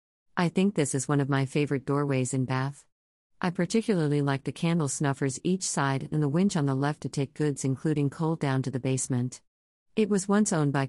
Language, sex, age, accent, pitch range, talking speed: English, female, 50-69, American, 135-155 Hz, 215 wpm